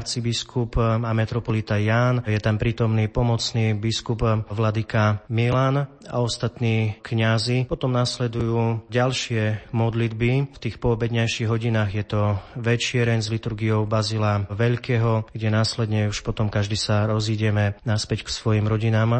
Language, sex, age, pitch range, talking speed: Slovak, male, 30-49, 110-120 Hz, 125 wpm